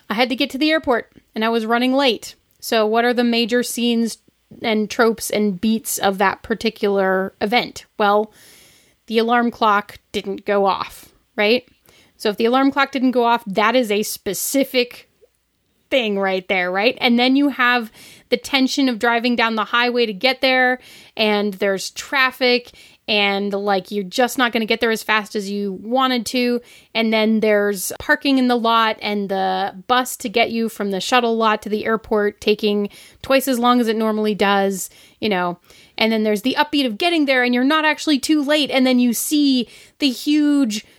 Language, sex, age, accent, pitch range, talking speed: English, female, 30-49, American, 210-255 Hz, 195 wpm